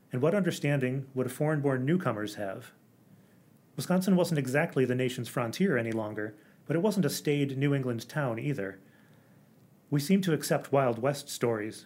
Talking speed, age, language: 155 wpm, 30-49, English